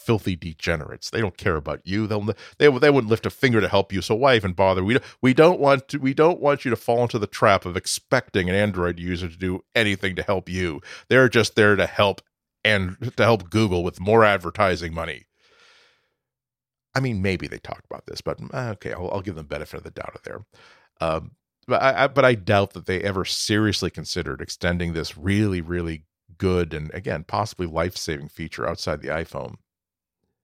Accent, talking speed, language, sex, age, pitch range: American, 205 wpm, English, male, 40-59, 90-125 Hz